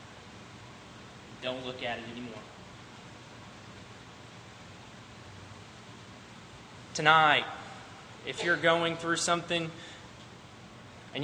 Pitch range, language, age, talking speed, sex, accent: 115-155 Hz, English, 20-39, 65 wpm, male, American